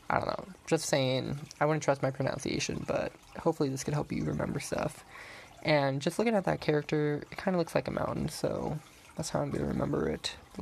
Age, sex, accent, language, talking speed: 20-39, male, American, English, 225 wpm